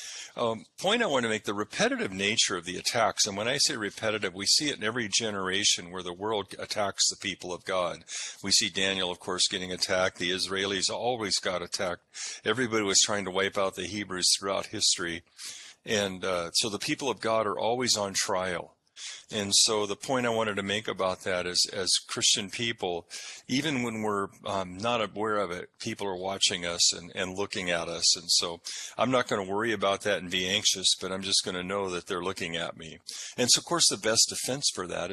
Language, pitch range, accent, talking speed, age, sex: English, 90-110 Hz, American, 215 wpm, 50-69, male